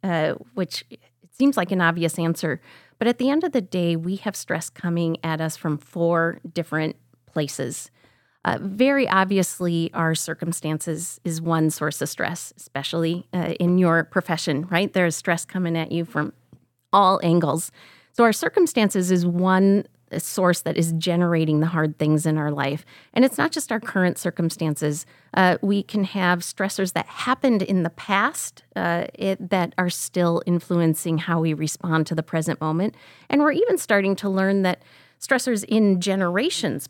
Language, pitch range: English, 160-195 Hz